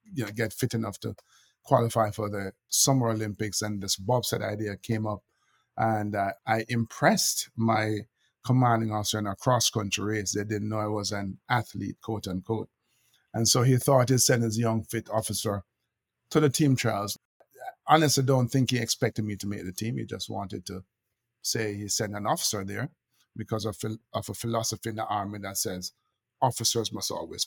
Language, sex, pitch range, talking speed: English, male, 105-130 Hz, 190 wpm